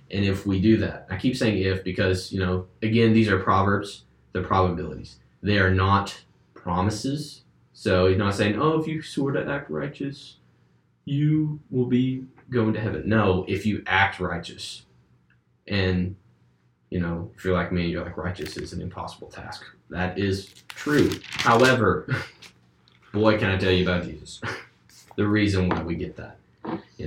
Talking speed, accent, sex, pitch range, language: 170 wpm, American, male, 90-105 Hz, English